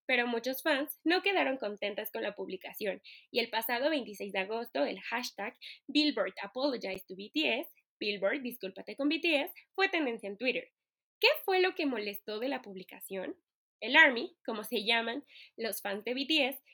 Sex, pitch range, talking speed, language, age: female, 200-295 Hz, 165 wpm, Spanish, 20-39